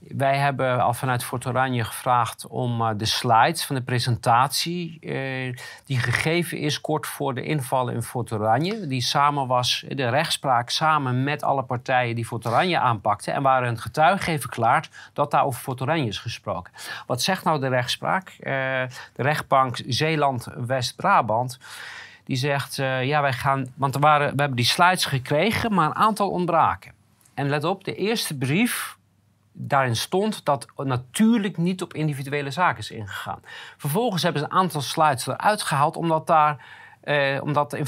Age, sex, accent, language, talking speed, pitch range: 40-59, male, Dutch, Dutch, 165 wpm, 125-155 Hz